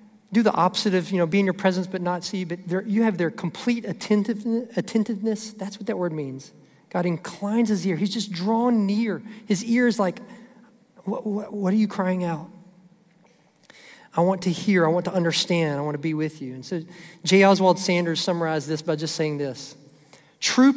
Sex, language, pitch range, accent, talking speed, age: male, English, 150-205 Hz, American, 200 wpm, 40-59